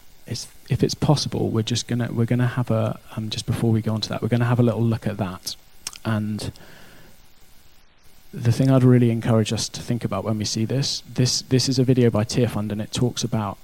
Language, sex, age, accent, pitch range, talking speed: English, male, 20-39, British, 105-120 Hz, 220 wpm